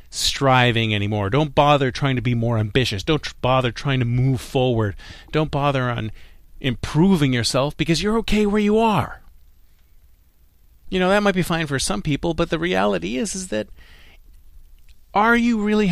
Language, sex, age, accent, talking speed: English, male, 40-59, American, 165 wpm